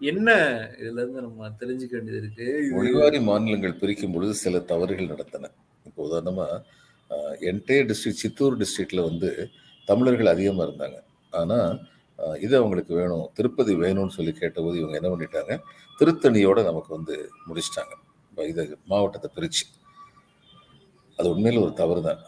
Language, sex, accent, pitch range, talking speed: Tamil, male, native, 95-135 Hz, 95 wpm